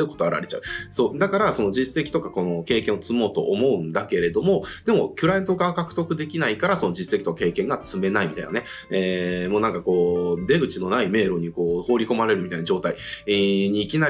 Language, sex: Japanese, male